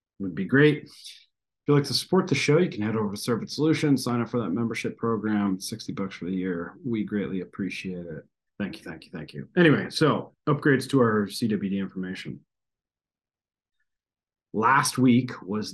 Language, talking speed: English, 185 wpm